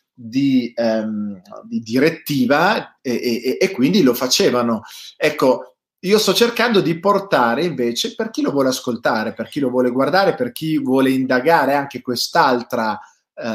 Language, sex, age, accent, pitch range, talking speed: Italian, male, 30-49, native, 120-155 Hz, 140 wpm